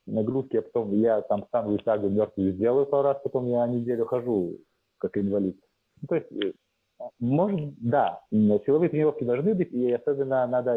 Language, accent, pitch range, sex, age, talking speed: Russian, native, 105-135 Hz, male, 30-49, 155 wpm